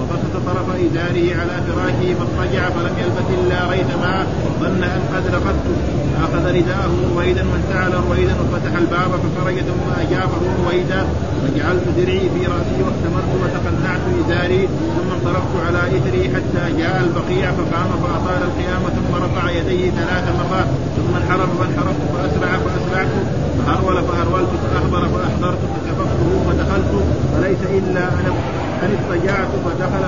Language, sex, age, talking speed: Arabic, male, 30-49, 125 wpm